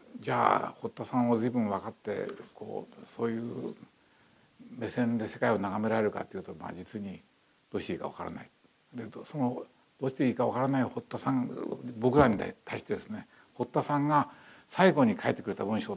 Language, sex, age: Japanese, male, 60-79